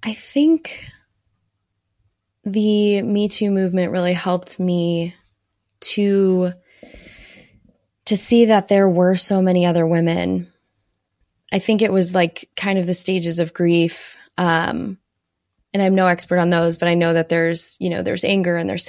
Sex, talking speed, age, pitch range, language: female, 155 wpm, 20-39, 170-205 Hz, English